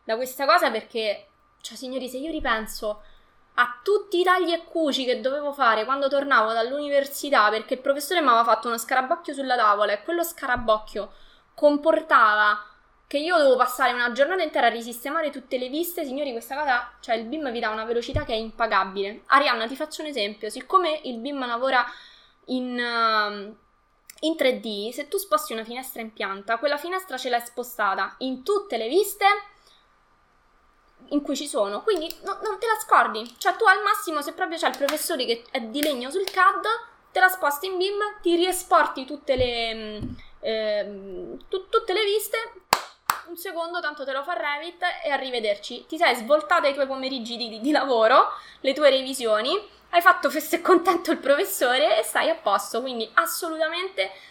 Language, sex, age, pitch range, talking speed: Italian, female, 20-39, 235-335 Hz, 180 wpm